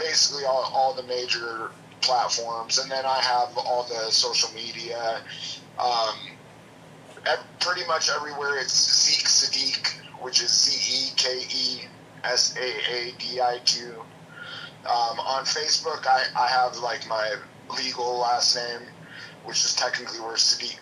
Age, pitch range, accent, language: 30-49, 120-150 Hz, American, English